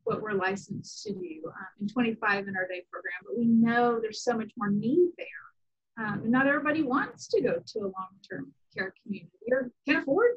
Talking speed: 210 wpm